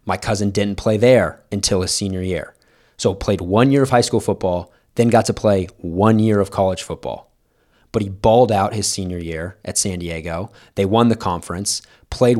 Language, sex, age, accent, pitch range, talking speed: English, male, 20-39, American, 95-115 Hz, 205 wpm